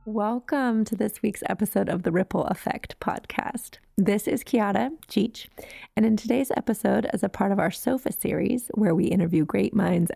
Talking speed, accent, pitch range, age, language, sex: 175 wpm, American, 190-235 Hz, 20-39, English, female